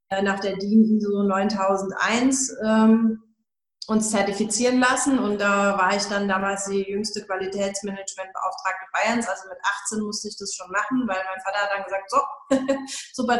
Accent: German